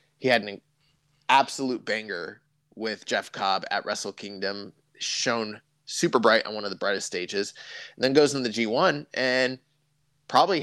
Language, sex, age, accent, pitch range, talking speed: English, male, 20-39, American, 110-145 Hz, 160 wpm